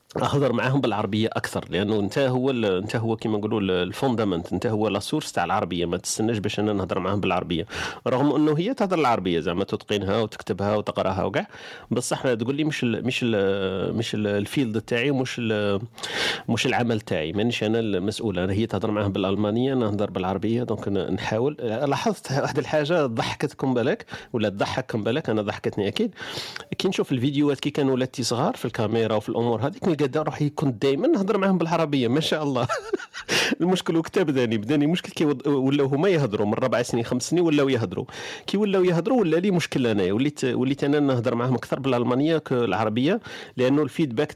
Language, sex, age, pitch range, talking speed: Arabic, male, 40-59, 110-145 Hz, 170 wpm